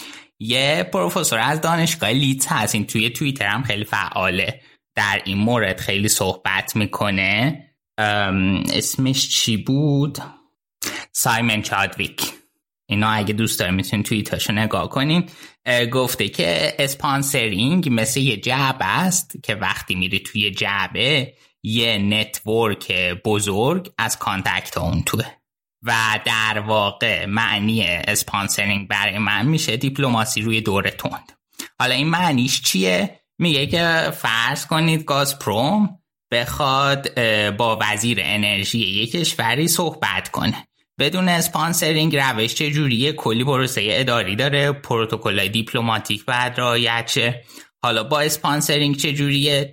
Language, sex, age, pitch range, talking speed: Persian, male, 20-39, 105-140 Hz, 115 wpm